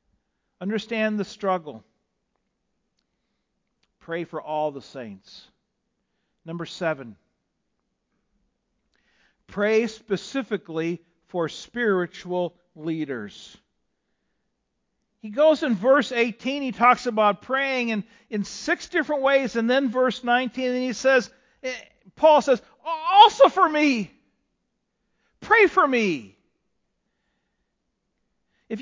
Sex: male